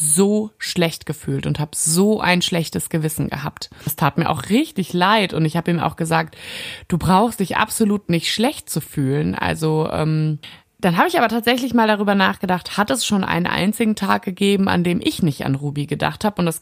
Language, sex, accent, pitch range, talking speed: German, female, German, 155-200 Hz, 205 wpm